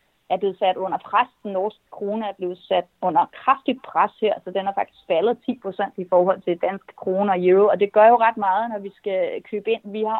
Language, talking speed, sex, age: Danish, 245 wpm, female, 30-49